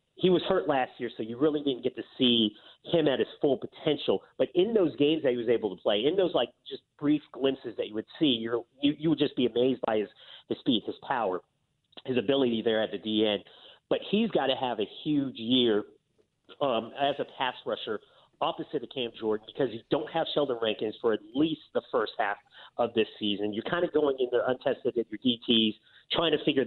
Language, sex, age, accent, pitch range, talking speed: English, male, 40-59, American, 115-150 Hz, 225 wpm